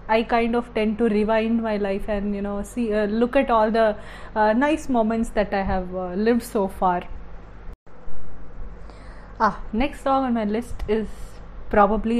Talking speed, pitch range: 170 wpm, 210-255 Hz